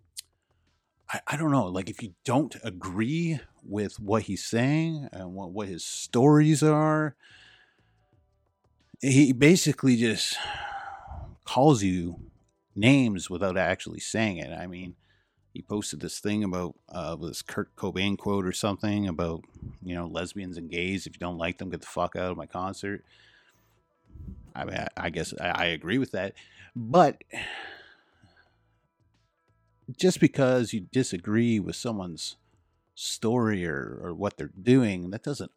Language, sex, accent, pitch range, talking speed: English, male, American, 95-120 Hz, 145 wpm